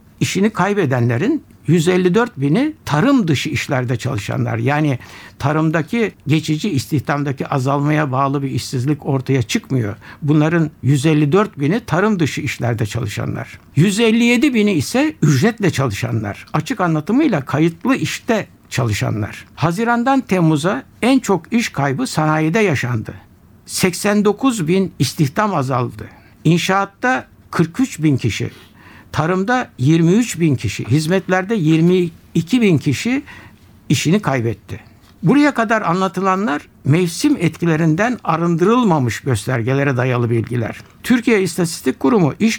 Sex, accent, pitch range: male, native, 130-190 Hz